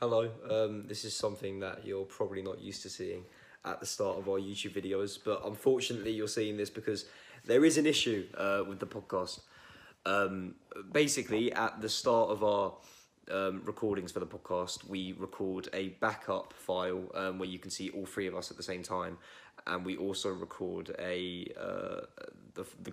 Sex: male